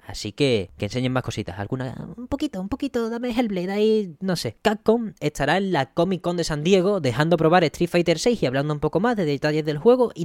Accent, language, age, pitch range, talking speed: Spanish, Spanish, 10-29, 110-165 Hz, 235 wpm